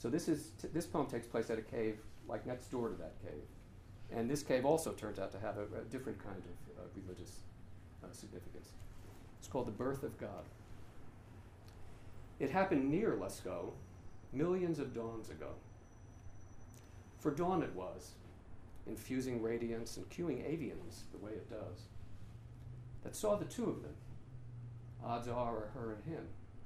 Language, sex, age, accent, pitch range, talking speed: English, male, 50-69, American, 100-120 Hz, 165 wpm